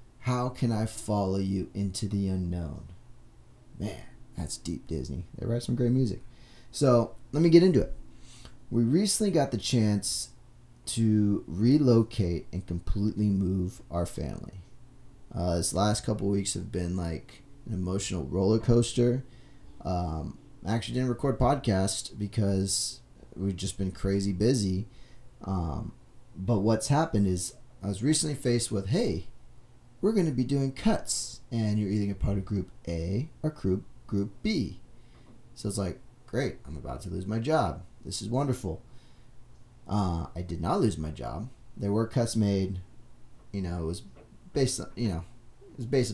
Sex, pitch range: male, 95-120 Hz